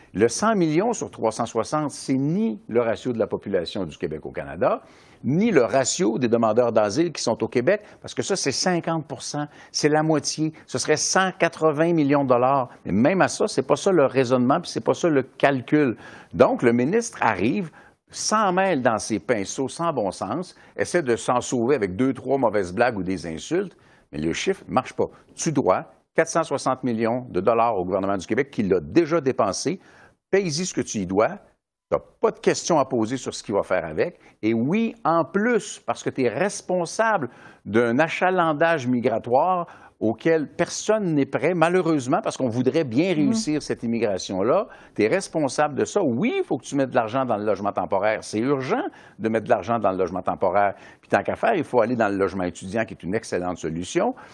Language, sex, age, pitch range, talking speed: French, male, 60-79, 115-170 Hz, 205 wpm